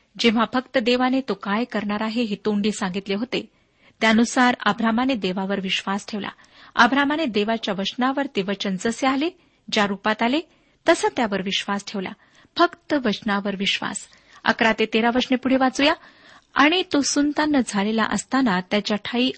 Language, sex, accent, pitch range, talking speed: Marathi, female, native, 205-265 Hz, 135 wpm